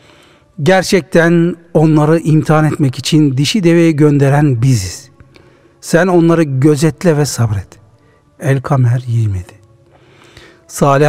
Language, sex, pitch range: Turkish, male, 125-175 Hz